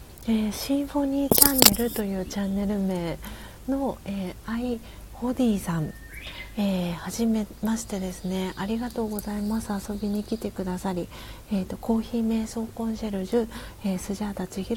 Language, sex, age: Japanese, female, 40-59